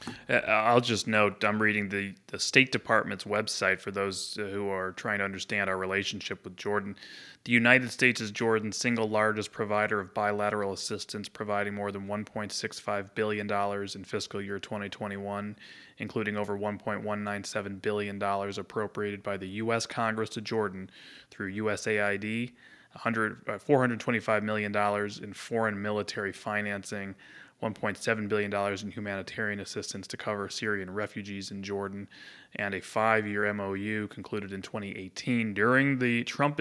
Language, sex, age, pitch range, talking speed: English, male, 20-39, 100-115 Hz, 135 wpm